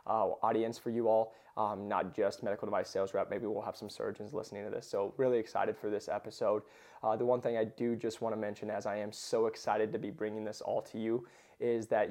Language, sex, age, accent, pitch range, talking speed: English, male, 20-39, American, 105-120 Hz, 245 wpm